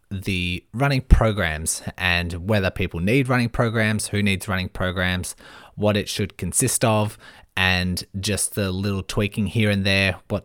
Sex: male